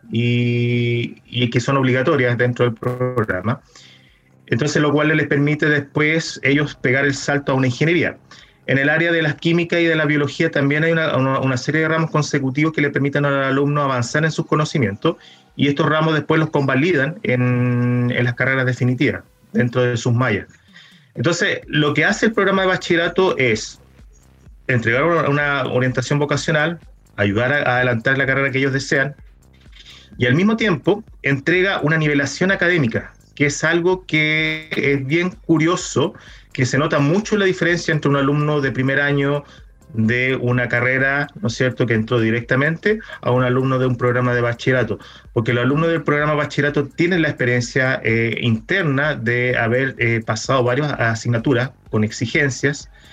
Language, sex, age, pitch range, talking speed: Spanish, male, 30-49, 120-150 Hz, 165 wpm